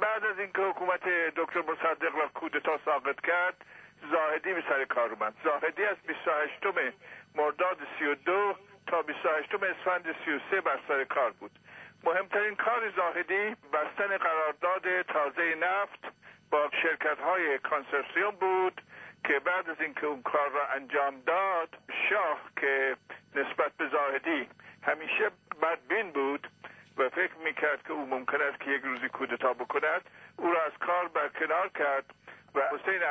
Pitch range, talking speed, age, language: 145-190 Hz, 140 wpm, 60-79, Persian